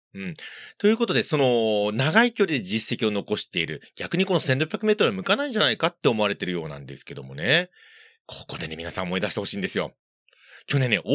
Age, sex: 30-49, male